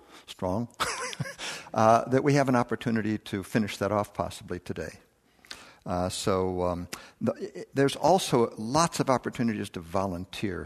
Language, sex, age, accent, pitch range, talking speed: English, male, 60-79, American, 95-120 Hz, 130 wpm